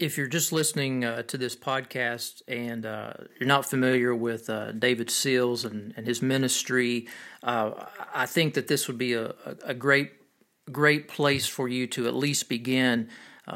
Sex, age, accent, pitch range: male, 40-59, American, 120-140 Hz